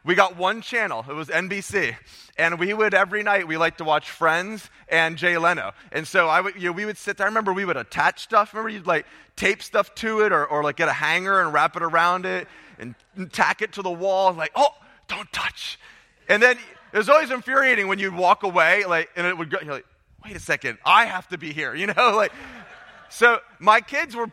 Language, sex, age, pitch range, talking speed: English, male, 30-49, 160-210 Hz, 235 wpm